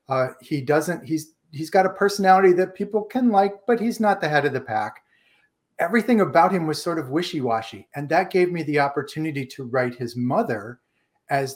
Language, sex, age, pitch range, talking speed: English, male, 40-59, 130-175 Hz, 200 wpm